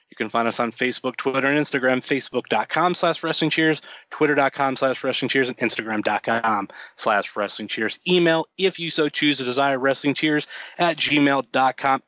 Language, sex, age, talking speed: English, male, 30-49, 165 wpm